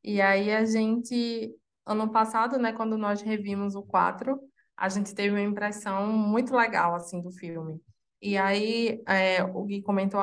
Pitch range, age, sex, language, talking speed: 195-225 Hz, 20-39, female, Portuguese, 165 wpm